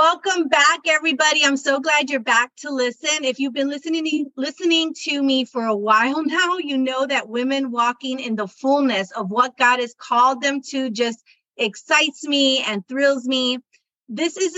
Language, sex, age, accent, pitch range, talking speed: English, female, 30-49, American, 240-290 Hz, 180 wpm